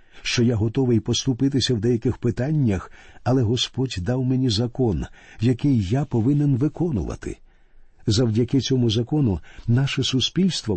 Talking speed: 115 wpm